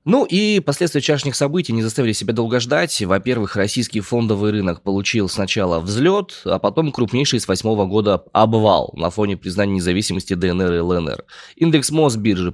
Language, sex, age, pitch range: Russian, male, 20-39, 100-145 Hz